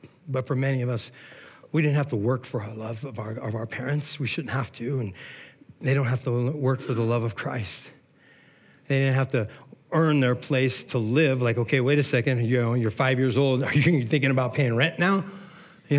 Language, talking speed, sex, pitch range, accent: English, 230 wpm, male, 125-150 Hz, American